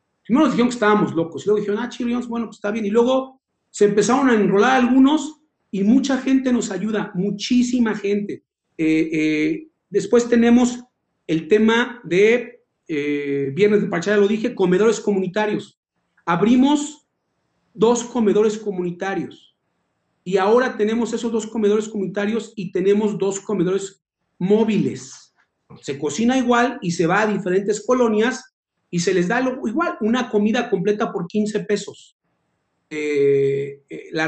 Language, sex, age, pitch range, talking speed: Spanish, male, 40-59, 175-225 Hz, 145 wpm